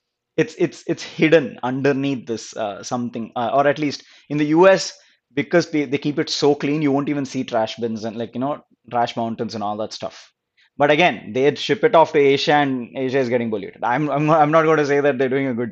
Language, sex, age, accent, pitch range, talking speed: English, male, 20-39, Indian, 120-155 Hz, 240 wpm